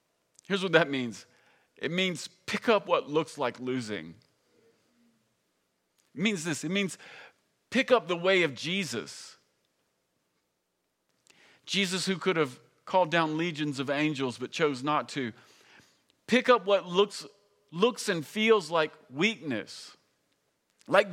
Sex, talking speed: male, 130 wpm